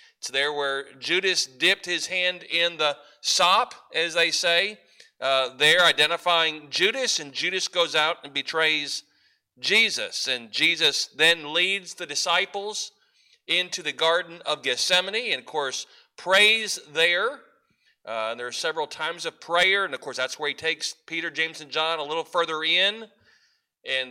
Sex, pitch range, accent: male, 150-190 Hz, American